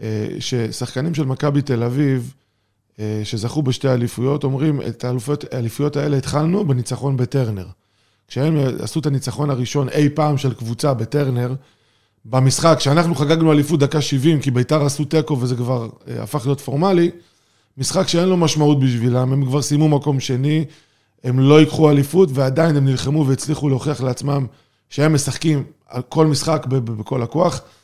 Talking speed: 145 wpm